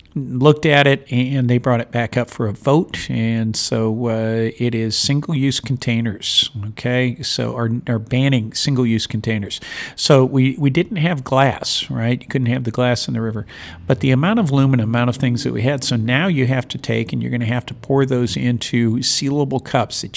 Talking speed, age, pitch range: 205 wpm, 50-69, 115-140 Hz